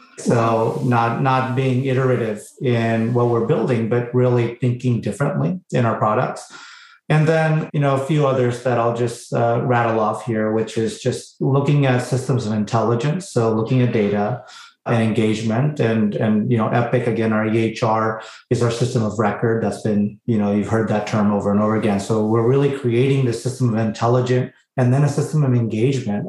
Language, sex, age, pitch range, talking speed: English, male, 30-49, 115-130 Hz, 190 wpm